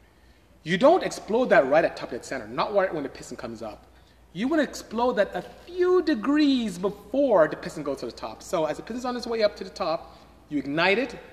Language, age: English, 30-49